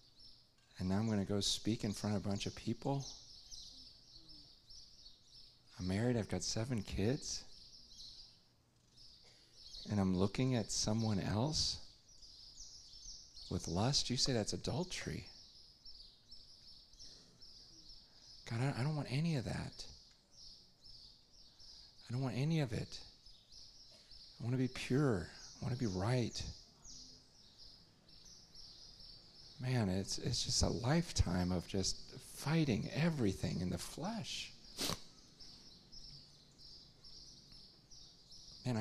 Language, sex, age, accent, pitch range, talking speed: English, male, 40-59, American, 95-125 Hz, 105 wpm